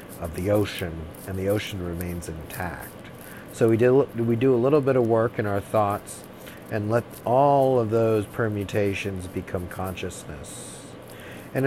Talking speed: 155 wpm